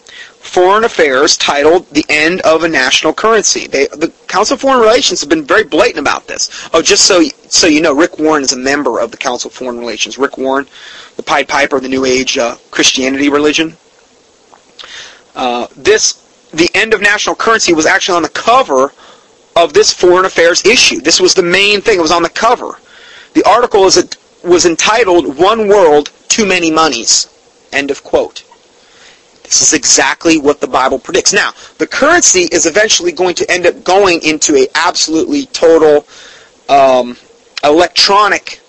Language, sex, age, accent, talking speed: English, male, 30-49, American, 175 wpm